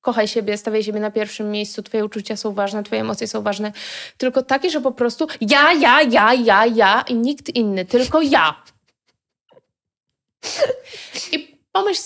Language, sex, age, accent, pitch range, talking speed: Polish, female, 20-39, native, 215-285 Hz, 160 wpm